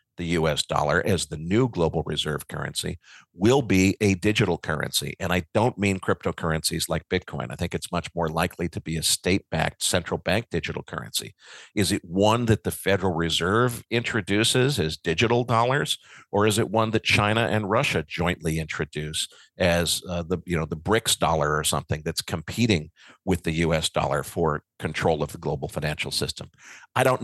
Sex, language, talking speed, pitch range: male, English, 175 wpm, 85-110 Hz